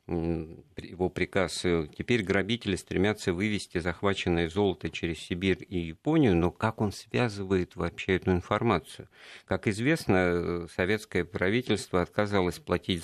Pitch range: 90-120 Hz